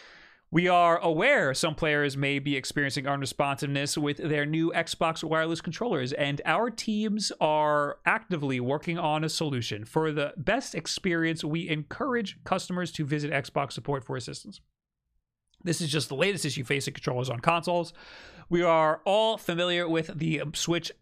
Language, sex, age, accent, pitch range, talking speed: English, male, 30-49, American, 135-165 Hz, 155 wpm